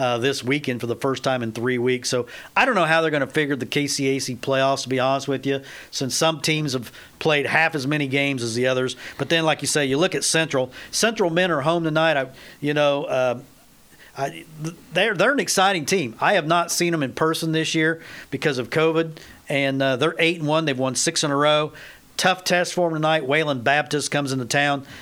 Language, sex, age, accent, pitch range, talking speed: English, male, 50-69, American, 135-160 Hz, 230 wpm